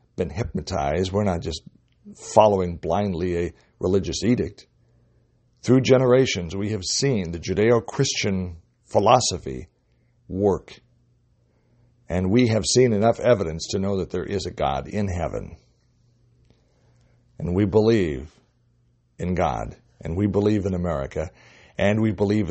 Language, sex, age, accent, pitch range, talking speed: English, male, 60-79, American, 90-120 Hz, 125 wpm